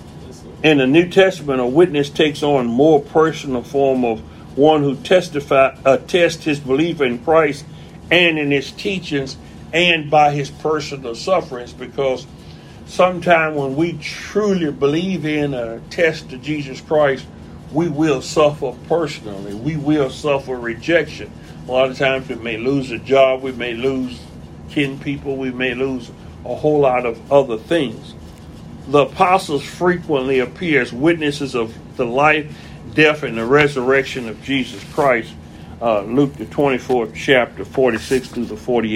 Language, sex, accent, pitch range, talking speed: English, male, American, 125-155 Hz, 150 wpm